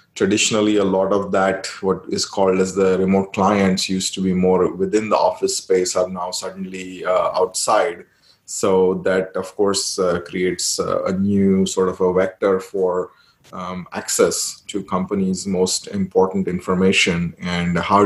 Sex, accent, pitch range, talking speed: male, Indian, 90-100 Hz, 160 wpm